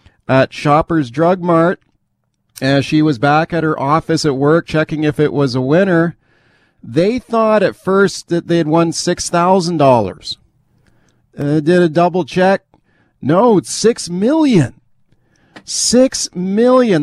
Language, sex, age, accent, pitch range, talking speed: English, male, 50-69, American, 145-175 Hz, 145 wpm